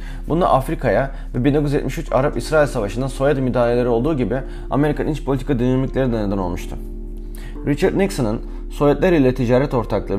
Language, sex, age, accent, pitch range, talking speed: Turkish, male, 30-49, native, 100-140 Hz, 135 wpm